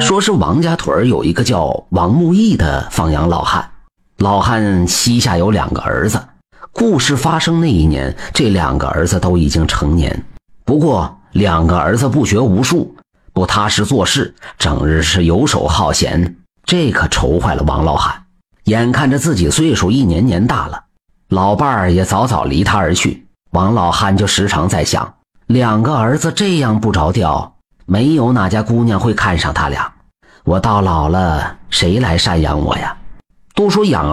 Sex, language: male, Chinese